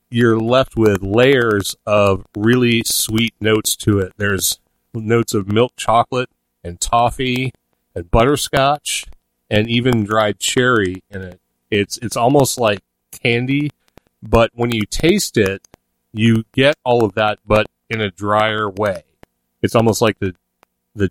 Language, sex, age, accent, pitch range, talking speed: English, male, 40-59, American, 100-120 Hz, 140 wpm